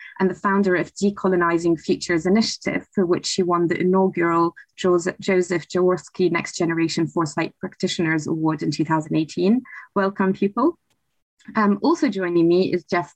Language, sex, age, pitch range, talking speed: English, female, 20-39, 175-210 Hz, 140 wpm